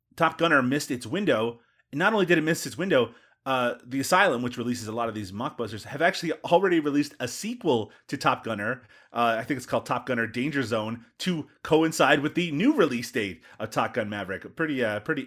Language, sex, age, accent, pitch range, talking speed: English, male, 30-49, American, 125-170 Hz, 215 wpm